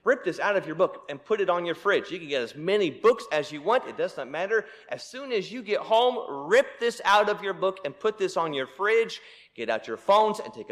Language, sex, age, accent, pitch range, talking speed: English, male, 30-49, American, 150-225 Hz, 275 wpm